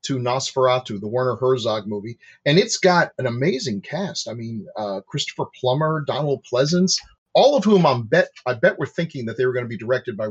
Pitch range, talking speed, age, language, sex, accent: 120-160 Hz, 210 wpm, 40-59, English, male, American